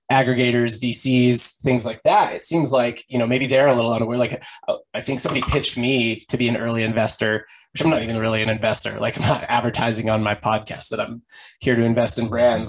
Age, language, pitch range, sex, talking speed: 20-39, English, 115-135 Hz, male, 220 wpm